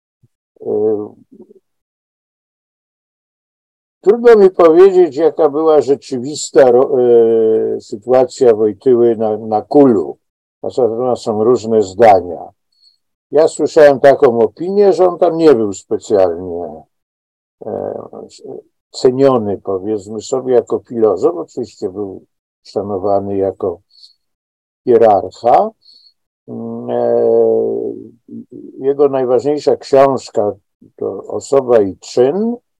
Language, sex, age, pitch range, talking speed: Polish, male, 50-69, 110-180 Hz, 85 wpm